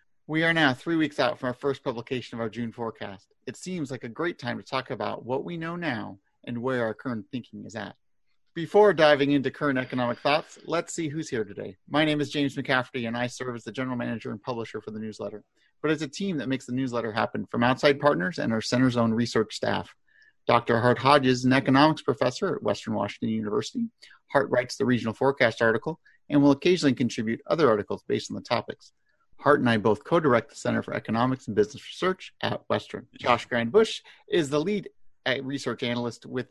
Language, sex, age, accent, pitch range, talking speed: English, male, 30-49, American, 115-150 Hz, 210 wpm